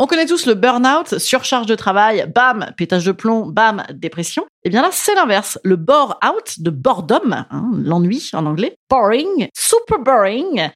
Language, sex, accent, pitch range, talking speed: French, female, French, 190-280 Hz, 165 wpm